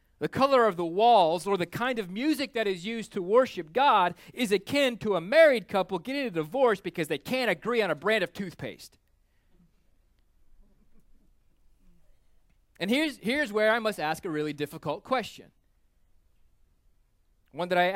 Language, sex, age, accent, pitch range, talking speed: English, male, 30-49, American, 155-225 Hz, 160 wpm